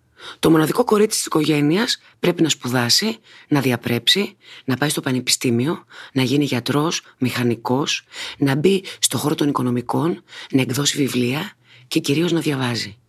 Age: 30-49